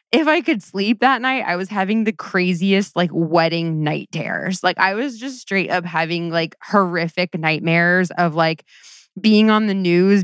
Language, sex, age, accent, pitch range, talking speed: English, female, 20-39, American, 165-200 Hz, 180 wpm